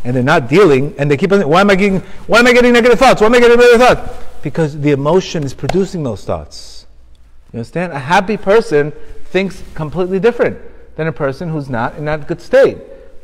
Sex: male